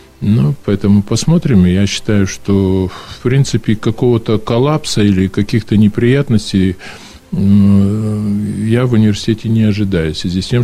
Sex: male